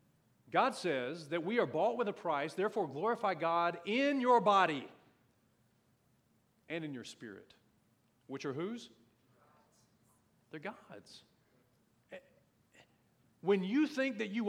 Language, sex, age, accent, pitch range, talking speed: English, male, 40-59, American, 125-200 Hz, 120 wpm